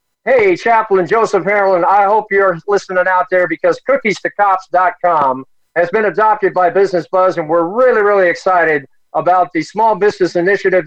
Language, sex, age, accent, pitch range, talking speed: English, male, 50-69, American, 170-215 Hz, 155 wpm